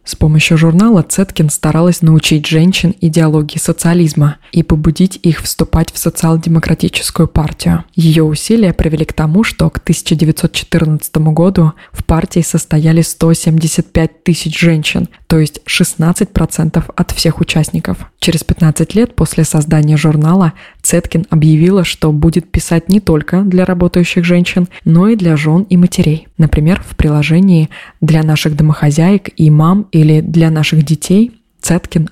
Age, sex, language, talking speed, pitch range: 20-39, female, Russian, 135 wpm, 155-175 Hz